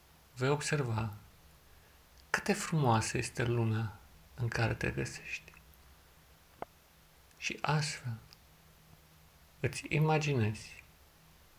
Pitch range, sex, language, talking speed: 80-135 Hz, male, Romanian, 80 wpm